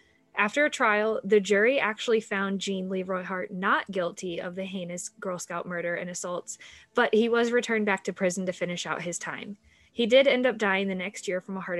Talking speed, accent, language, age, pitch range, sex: 220 wpm, American, English, 10-29, 185-225 Hz, female